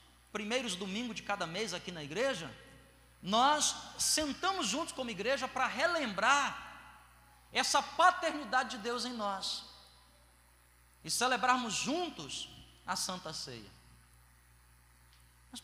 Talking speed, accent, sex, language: 105 wpm, Brazilian, male, Portuguese